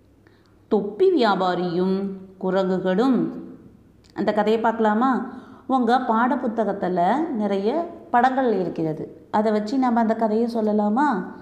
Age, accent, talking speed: 30-49, native, 95 wpm